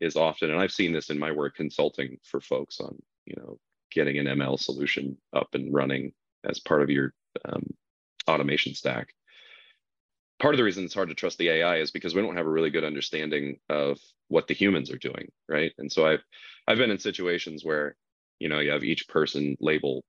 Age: 30-49